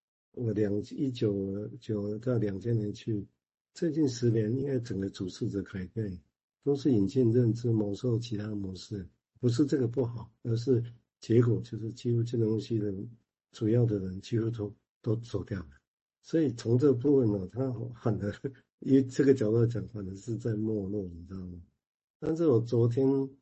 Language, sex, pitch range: Chinese, male, 105-125 Hz